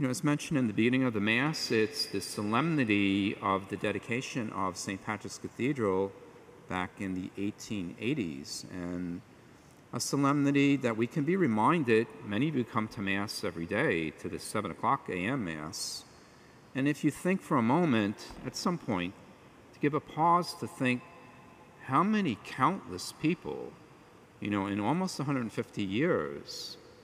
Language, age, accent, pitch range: English, 50-69, American, 110-150 Hz